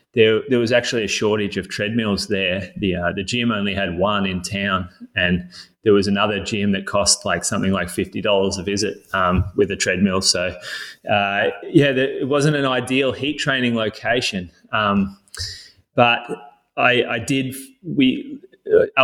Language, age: English, 20-39